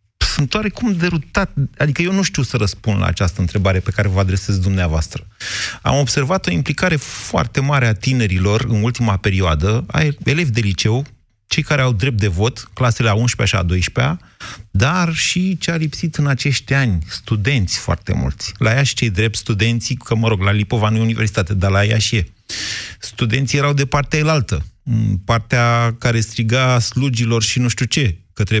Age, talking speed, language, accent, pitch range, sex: 30-49, 185 wpm, Romanian, native, 100-145 Hz, male